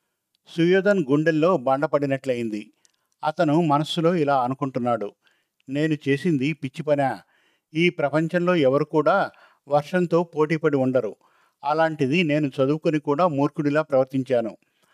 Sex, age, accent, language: male, 50-69, native, Telugu